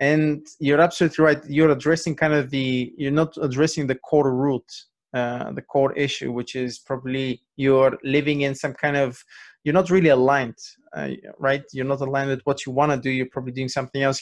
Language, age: English, 20-39